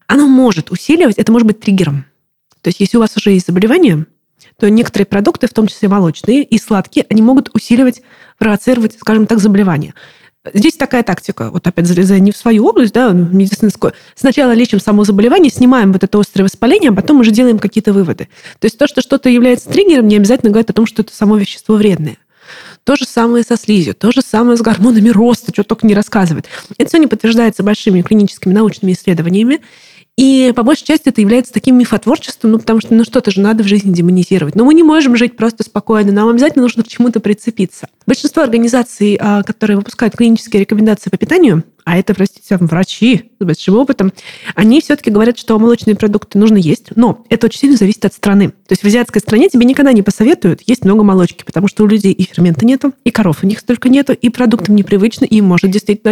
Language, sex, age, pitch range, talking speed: Russian, female, 20-39, 195-240 Hz, 205 wpm